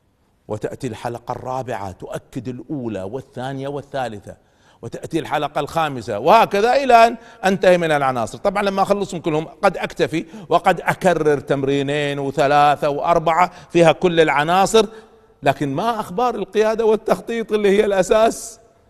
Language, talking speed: Arabic, 120 wpm